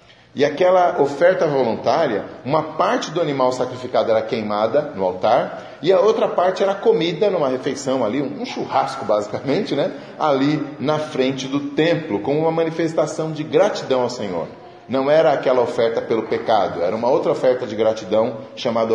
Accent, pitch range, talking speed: Brazilian, 115-160 Hz, 160 wpm